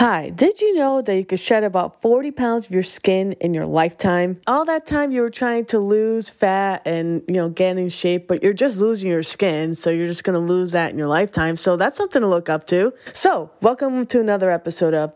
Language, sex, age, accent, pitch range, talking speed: English, female, 20-39, American, 175-225 Hz, 240 wpm